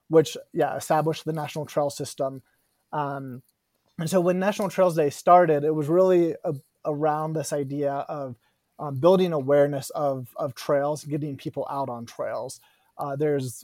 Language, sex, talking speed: English, male, 160 wpm